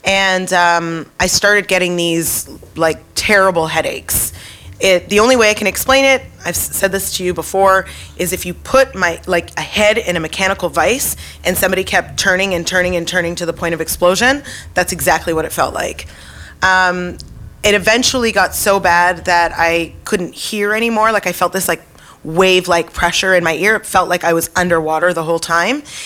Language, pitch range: English, 165-185 Hz